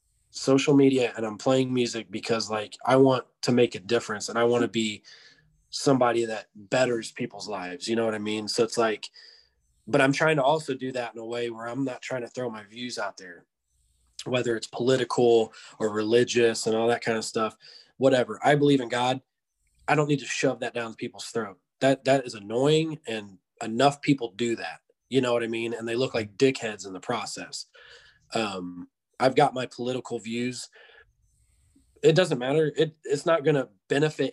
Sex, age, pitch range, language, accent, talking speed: male, 20-39, 110-135 Hz, English, American, 200 wpm